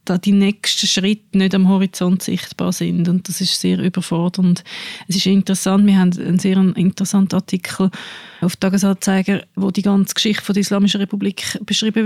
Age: 20-39